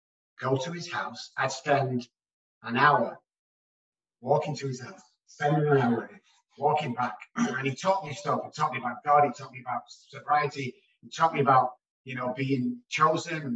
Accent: British